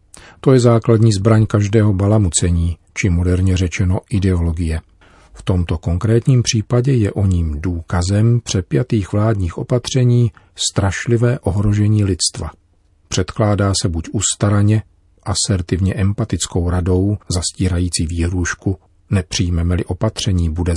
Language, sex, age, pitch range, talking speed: Czech, male, 40-59, 90-115 Hz, 105 wpm